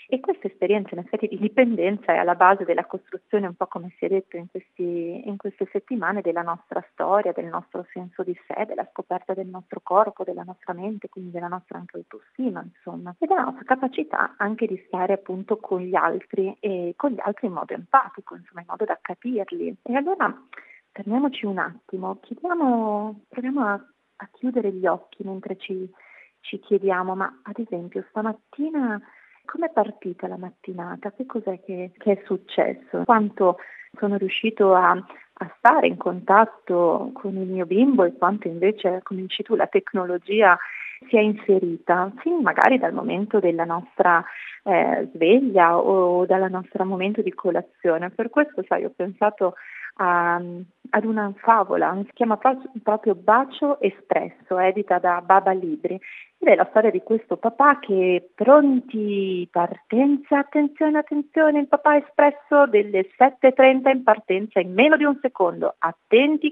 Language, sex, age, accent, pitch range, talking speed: Italian, female, 30-49, native, 185-250 Hz, 160 wpm